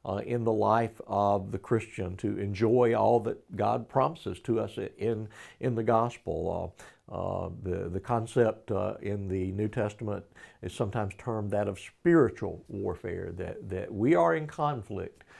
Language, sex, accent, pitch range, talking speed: English, male, American, 100-125 Hz, 165 wpm